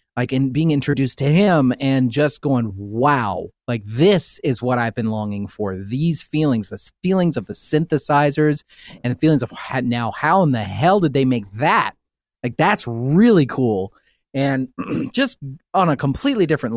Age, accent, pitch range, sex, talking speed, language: 30-49, American, 120-155 Hz, male, 175 wpm, English